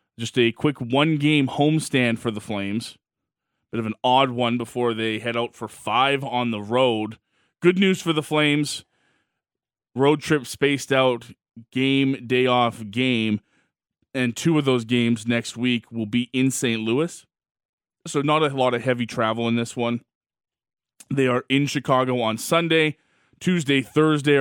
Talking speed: 160 wpm